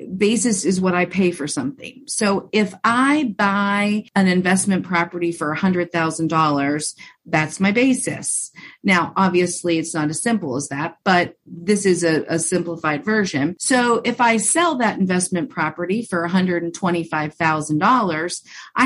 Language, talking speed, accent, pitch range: English, 135 wpm, American, 170-215 Hz